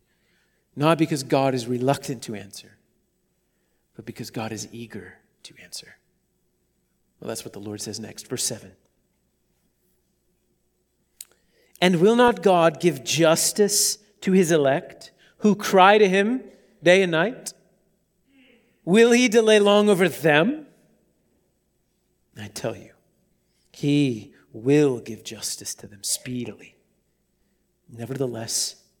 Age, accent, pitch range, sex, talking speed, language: 40-59, American, 130-185 Hz, male, 115 wpm, English